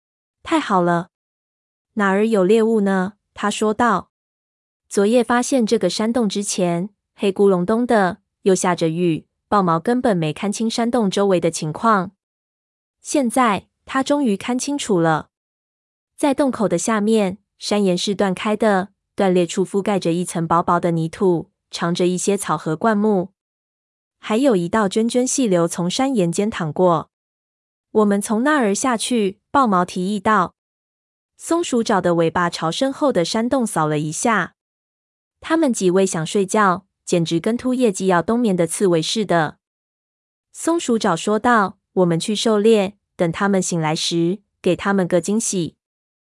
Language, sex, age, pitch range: Chinese, female, 20-39, 170-220 Hz